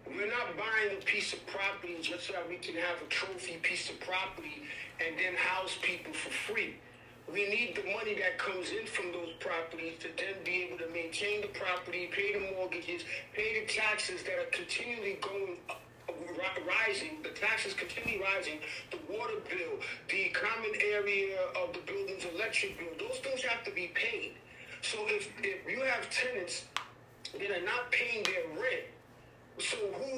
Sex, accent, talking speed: male, American, 175 wpm